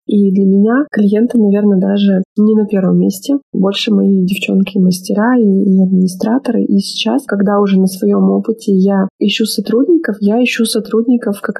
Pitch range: 195-225 Hz